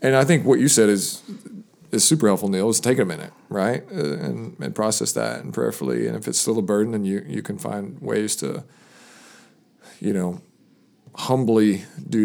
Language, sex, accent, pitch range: English, male, American, 125-160 Hz